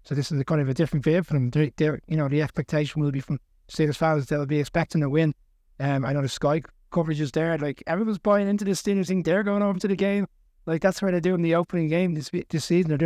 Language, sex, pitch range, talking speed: English, male, 130-165 Hz, 280 wpm